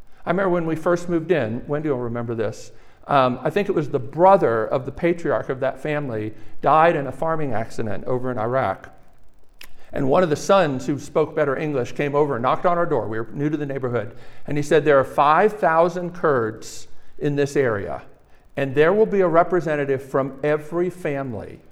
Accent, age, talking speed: American, 50-69, 200 wpm